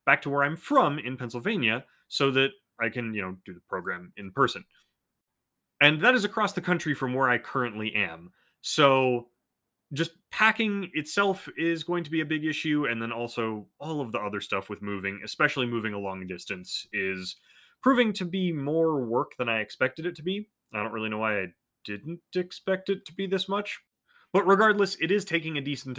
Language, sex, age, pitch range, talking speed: English, male, 30-49, 110-160 Hz, 200 wpm